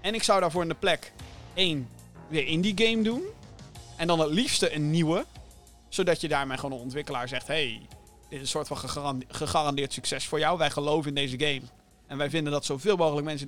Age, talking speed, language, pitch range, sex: 30-49, 220 wpm, Dutch, 130-180 Hz, male